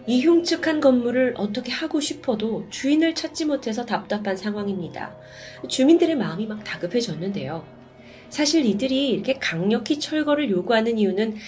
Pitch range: 170-255 Hz